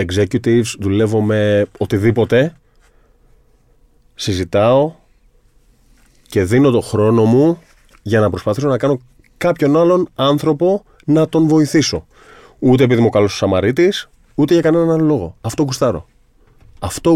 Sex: male